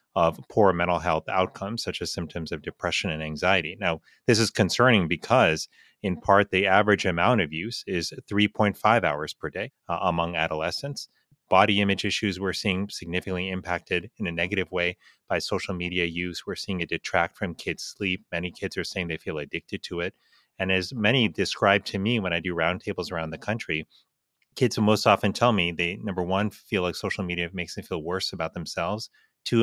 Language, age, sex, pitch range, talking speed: English, 30-49, male, 85-105 Hz, 190 wpm